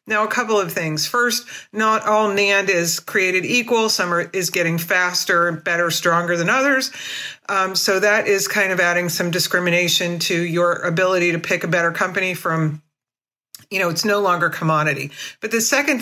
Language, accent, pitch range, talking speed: English, American, 165-205 Hz, 180 wpm